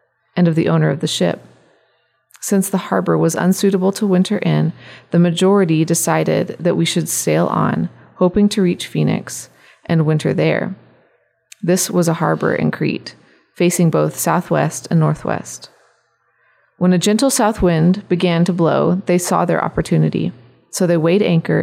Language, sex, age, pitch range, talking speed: English, female, 30-49, 165-190 Hz, 160 wpm